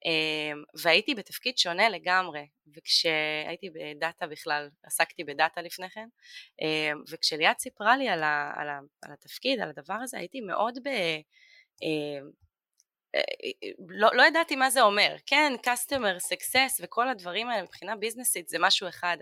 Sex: female